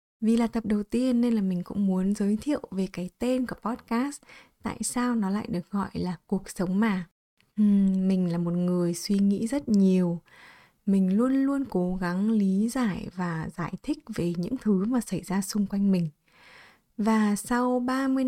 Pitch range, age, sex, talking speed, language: 185-230 Hz, 20-39, female, 190 wpm, Vietnamese